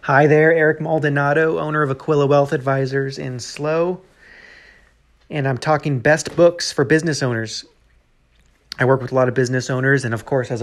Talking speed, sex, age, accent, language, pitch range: 175 wpm, male, 30-49, American, English, 120-145 Hz